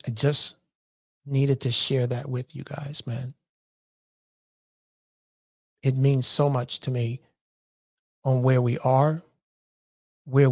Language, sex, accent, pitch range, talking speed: English, male, American, 125-145 Hz, 120 wpm